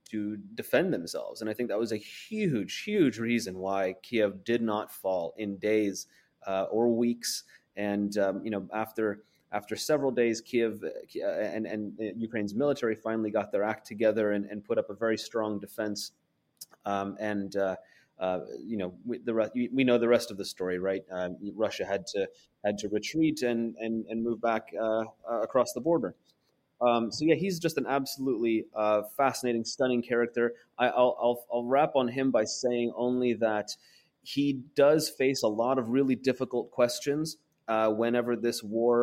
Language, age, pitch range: English, 30-49, 105-125 Hz